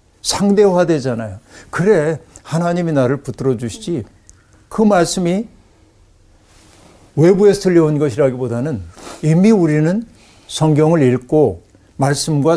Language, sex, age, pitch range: Korean, male, 60-79, 105-170 Hz